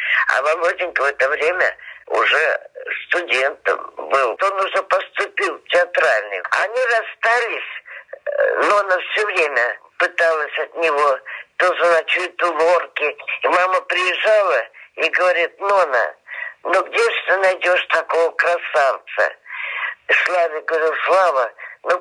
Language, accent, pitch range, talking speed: Russian, American, 175-245 Hz, 125 wpm